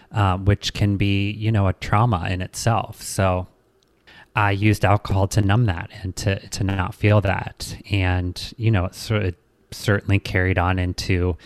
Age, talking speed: 30-49, 175 wpm